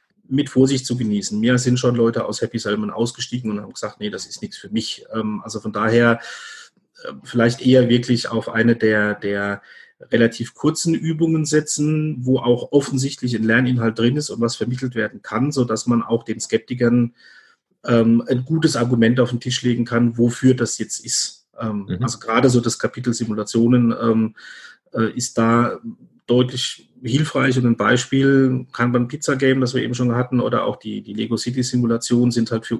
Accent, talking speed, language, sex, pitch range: German, 175 wpm, German, male, 115-125 Hz